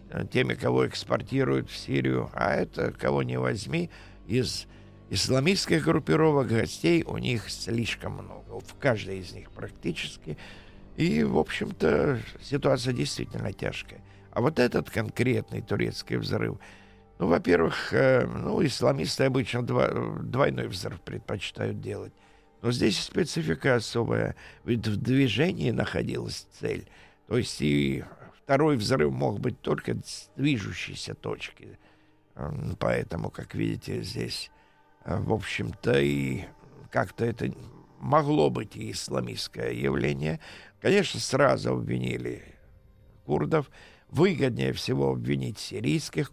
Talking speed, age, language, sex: 110 wpm, 50-69, Russian, male